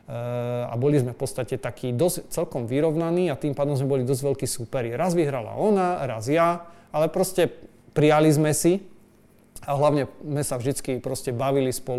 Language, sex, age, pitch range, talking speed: Slovak, male, 30-49, 125-150 Hz, 170 wpm